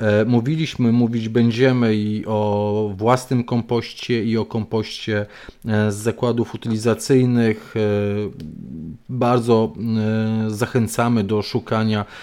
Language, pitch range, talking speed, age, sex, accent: Polish, 110-120 Hz, 85 wpm, 40-59, male, native